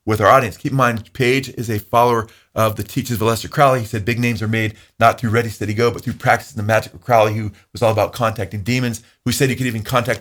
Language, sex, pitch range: English, male, 110-140 Hz